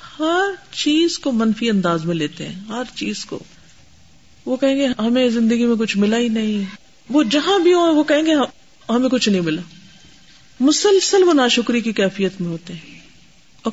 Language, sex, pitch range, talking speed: Urdu, female, 180-250 Hz, 185 wpm